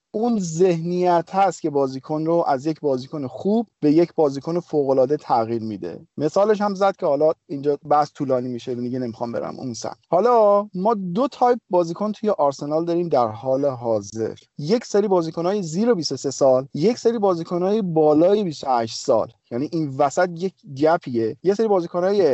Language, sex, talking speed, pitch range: Persian, male, 170 wpm, 135-180 Hz